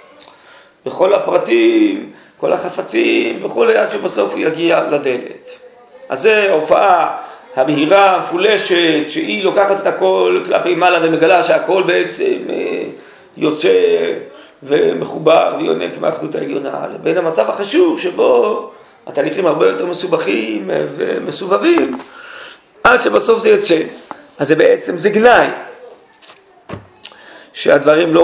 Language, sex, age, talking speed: Hebrew, male, 40-59, 105 wpm